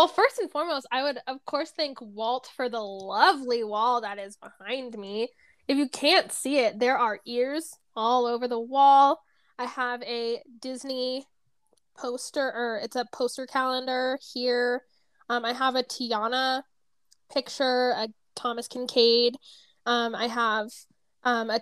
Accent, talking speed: American, 155 wpm